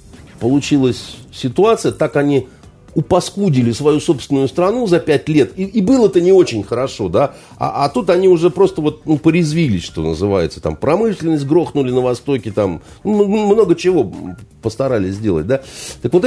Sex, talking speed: male, 160 wpm